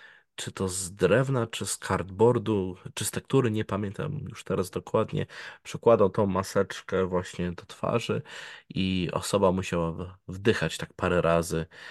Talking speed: 140 wpm